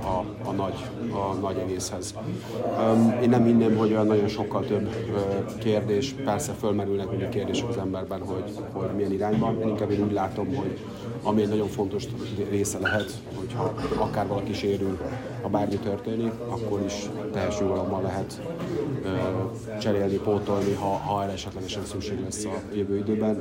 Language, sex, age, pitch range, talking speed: Hungarian, male, 30-49, 95-105 Hz, 165 wpm